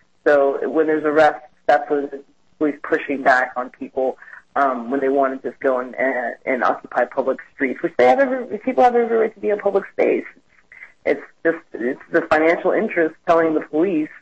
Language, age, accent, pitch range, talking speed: English, 30-49, American, 135-170 Hz, 195 wpm